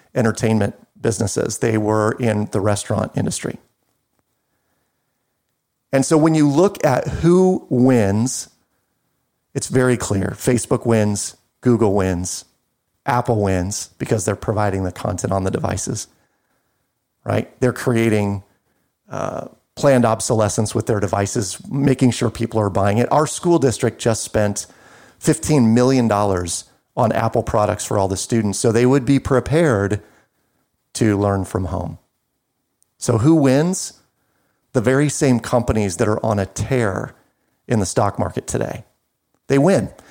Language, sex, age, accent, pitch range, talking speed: English, male, 40-59, American, 105-130 Hz, 135 wpm